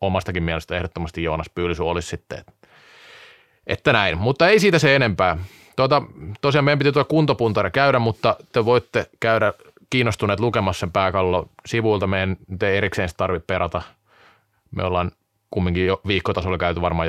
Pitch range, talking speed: 95-120 Hz, 150 wpm